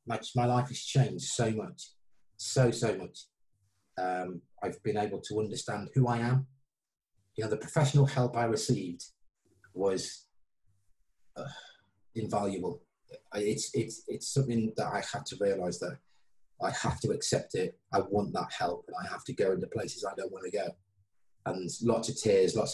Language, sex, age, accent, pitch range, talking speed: English, male, 30-49, British, 100-130 Hz, 170 wpm